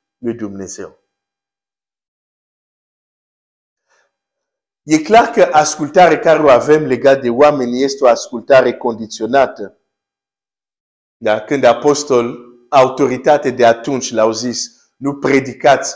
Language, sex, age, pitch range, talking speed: Romanian, male, 50-69, 115-155 Hz, 100 wpm